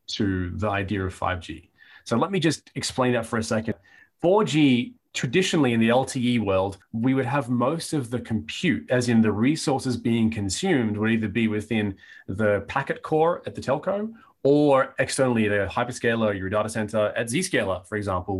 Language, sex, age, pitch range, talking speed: English, male, 30-49, 105-135 Hz, 175 wpm